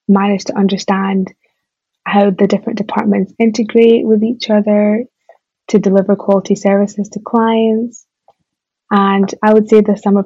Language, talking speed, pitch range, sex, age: English, 135 wpm, 195-210 Hz, female, 20-39